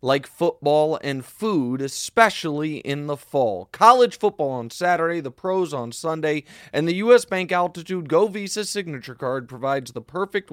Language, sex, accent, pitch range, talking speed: English, male, American, 130-185 Hz, 160 wpm